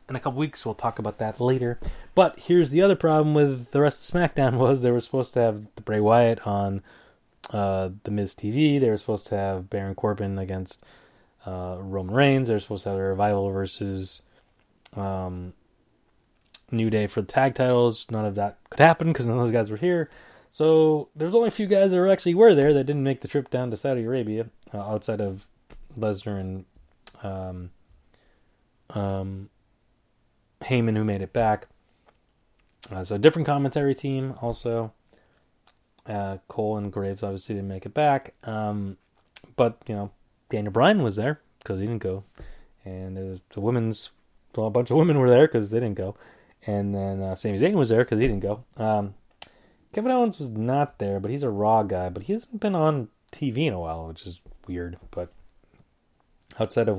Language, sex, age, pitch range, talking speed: English, male, 20-39, 100-130 Hz, 195 wpm